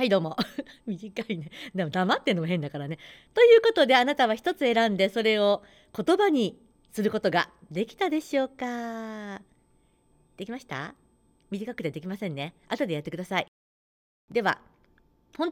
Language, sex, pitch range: Japanese, female, 175-265 Hz